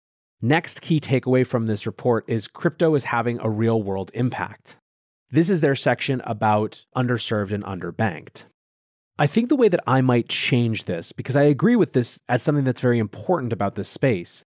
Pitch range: 110-150 Hz